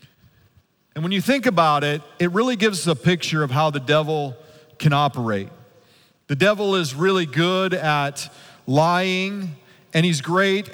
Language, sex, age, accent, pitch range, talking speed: English, male, 40-59, American, 140-175 Hz, 155 wpm